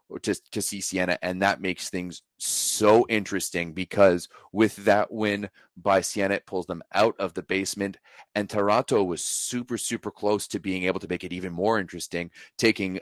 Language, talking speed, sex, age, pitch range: English, 185 wpm, male, 30-49, 85-100 Hz